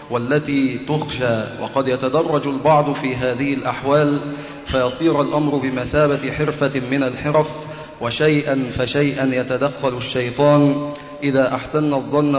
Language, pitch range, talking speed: Arabic, 130-145 Hz, 100 wpm